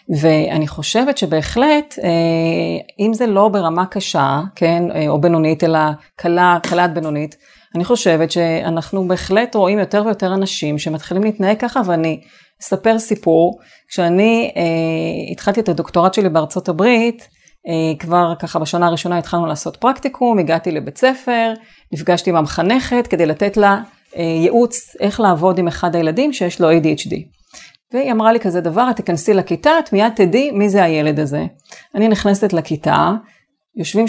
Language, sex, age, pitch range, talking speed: Hebrew, female, 30-49, 165-220 Hz, 140 wpm